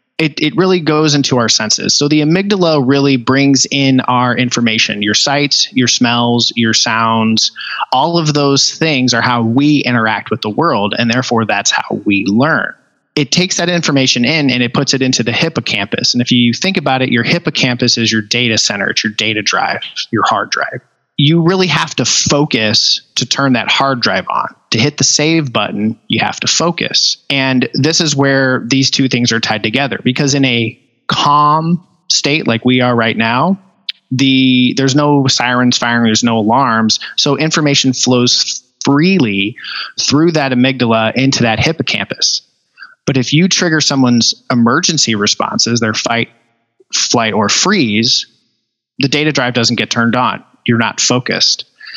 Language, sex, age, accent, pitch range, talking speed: English, male, 20-39, American, 120-145 Hz, 170 wpm